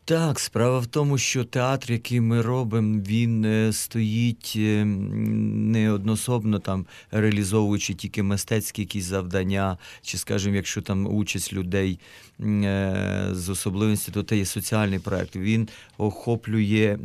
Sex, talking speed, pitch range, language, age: male, 120 wpm, 100-110 Hz, Ukrainian, 50-69